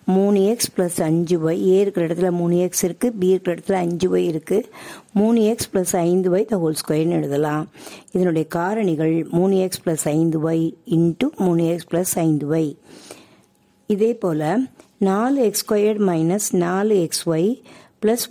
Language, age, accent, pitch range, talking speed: Tamil, 60-79, native, 165-210 Hz, 110 wpm